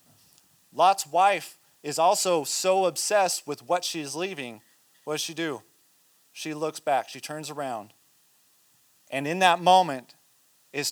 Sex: male